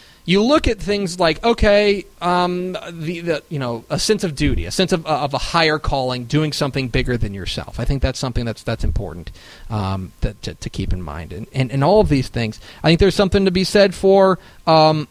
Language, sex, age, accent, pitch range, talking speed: English, male, 30-49, American, 115-170 Hz, 225 wpm